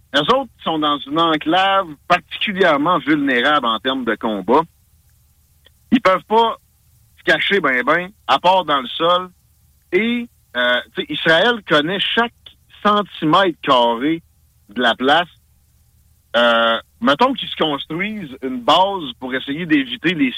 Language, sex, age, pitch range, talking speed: French, male, 50-69, 120-195 Hz, 135 wpm